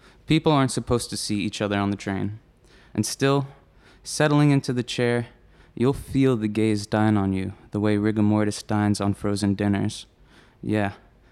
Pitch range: 100-115 Hz